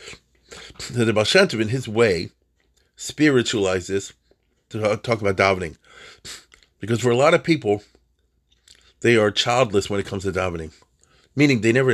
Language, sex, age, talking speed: English, male, 40-59, 130 wpm